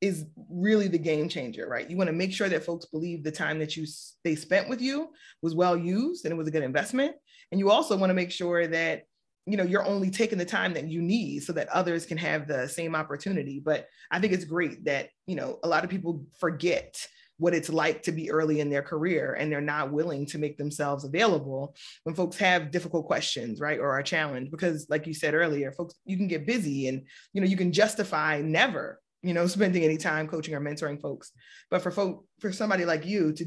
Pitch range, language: 150-180 Hz, English